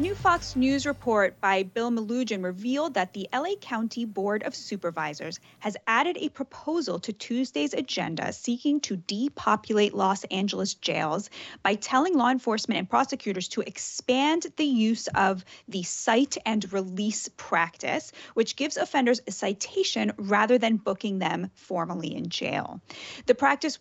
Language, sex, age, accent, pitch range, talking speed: English, female, 30-49, American, 195-265 Hz, 150 wpm